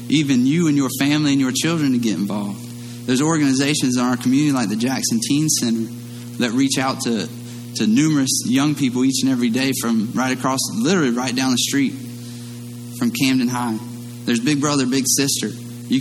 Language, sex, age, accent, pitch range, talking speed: English, male, 30-49, American, 120-135 Hz, 185 wpm